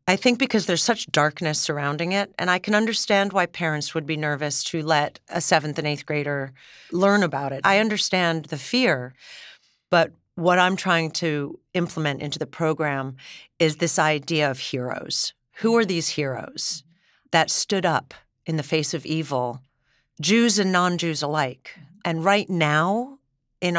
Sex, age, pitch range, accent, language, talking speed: female, 40-59, 155-200 Hz, American, English, 165 wpm